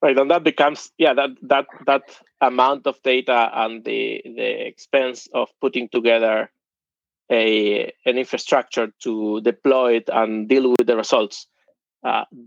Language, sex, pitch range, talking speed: English, male, 115-135 Hz, 145 wpm